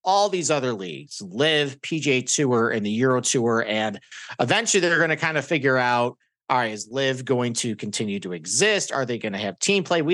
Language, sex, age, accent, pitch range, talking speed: English, male, 40-59, American, 120-155 Hz, 220 wpm